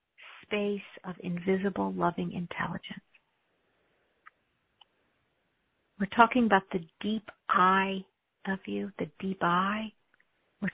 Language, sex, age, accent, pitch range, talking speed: English, female, 50-69, American, 175-205 Hz, 95 wpm